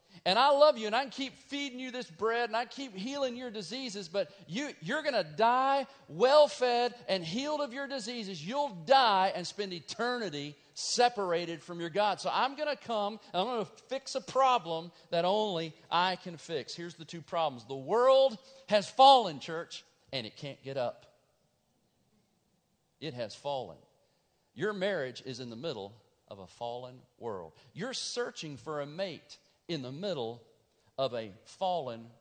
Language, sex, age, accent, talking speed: English, male, 40-59, American, 175 wpm